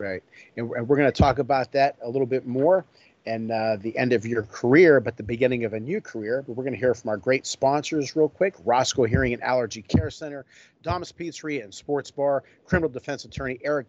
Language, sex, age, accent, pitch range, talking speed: English, male, 40-59, American, 120-145 Hz, 225 wpm